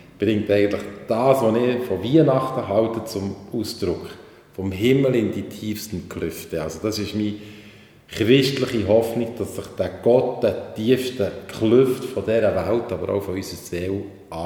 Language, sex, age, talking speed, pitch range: German, male, 40-59, 150 wpm, 95-115 Hz